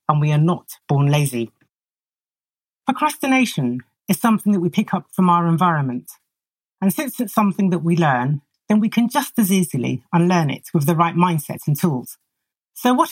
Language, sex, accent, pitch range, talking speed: English, female, British, 155-210 Hz, 175 wpm